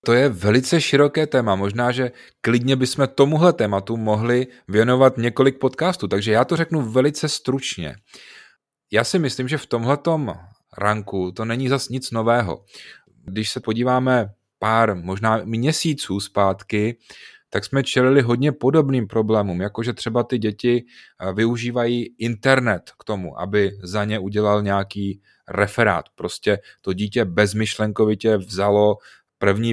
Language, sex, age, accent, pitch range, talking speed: Czech, male, 30-49, native, 105-120 Hz, 135 wpm